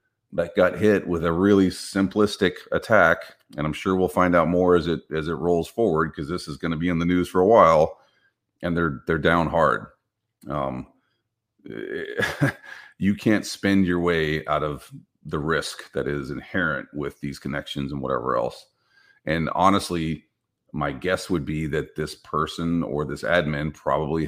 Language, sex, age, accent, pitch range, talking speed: English, male, 40-59, American, 75-95 Hz, 175 wpm